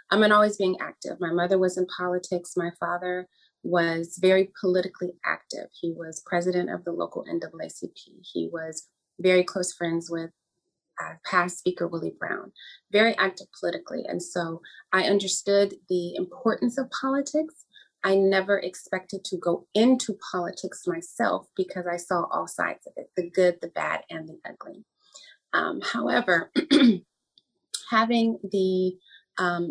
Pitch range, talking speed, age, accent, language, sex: 175-215 Hz, 145 wpm, 30-49, American, English, female